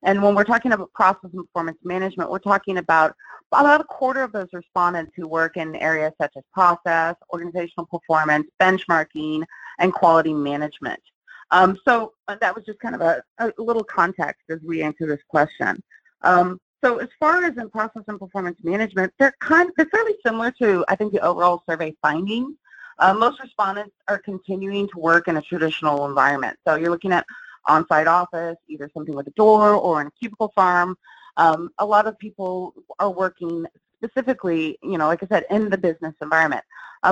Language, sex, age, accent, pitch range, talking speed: English, female, 30-49, American, 165-220 Hz, 185 wpm